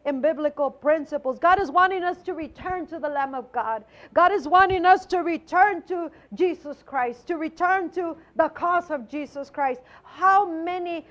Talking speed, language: 180 wpm, English